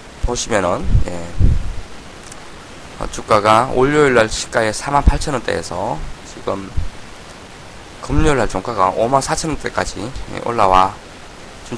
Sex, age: male, 20-39